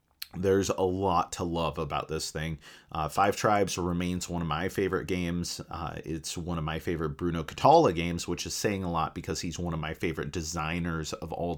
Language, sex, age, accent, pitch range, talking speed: English, male, 30-49, American, 85-105 Hz, 205 wpm